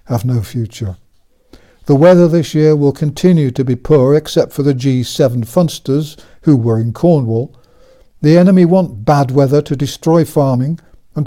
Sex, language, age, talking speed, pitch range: male, English, 60-79, 160 wpm, 125-160 Hz